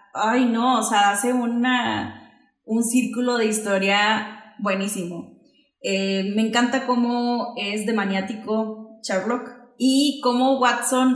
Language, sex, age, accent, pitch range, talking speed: Spanish, female, 20-39, Mexican, 210-250 Hz, 115 wpm